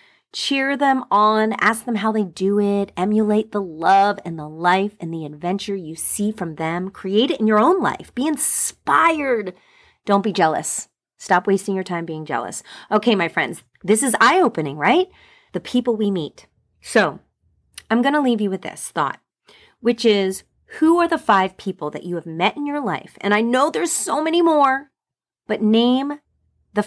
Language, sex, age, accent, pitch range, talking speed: English, female, 30-49, American, 175-235 Hz, 185 wpm